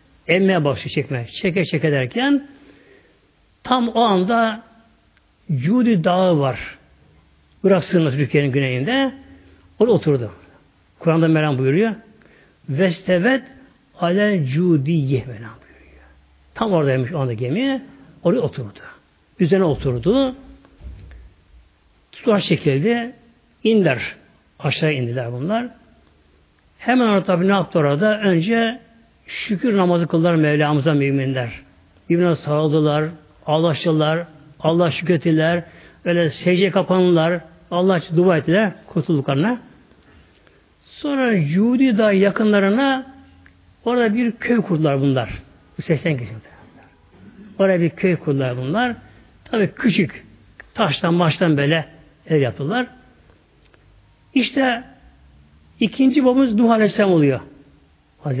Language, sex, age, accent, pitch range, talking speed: Turkish, male, 60-79, native, 140-215 Hz, 100 wpm